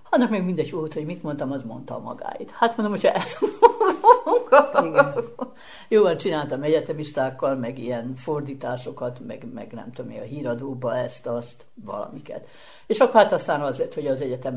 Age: 60-79